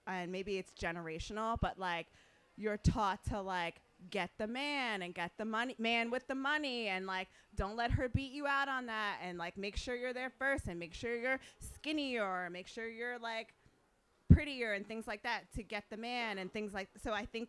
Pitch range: 180-225 Hz